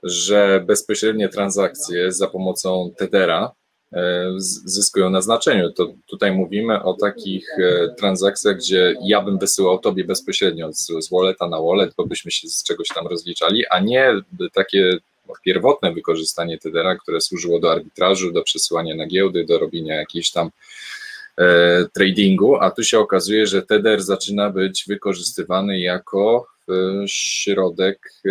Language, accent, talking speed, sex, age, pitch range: Polish, native, 130 wpm, male, 20-39, 90-100 Hz